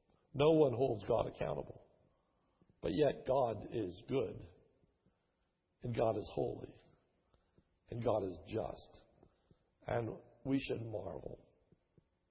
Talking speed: 105 wpm